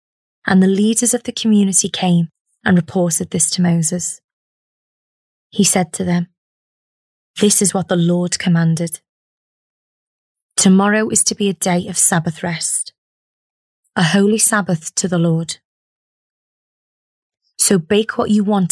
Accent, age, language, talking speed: British, 20-39, English, 135 wpm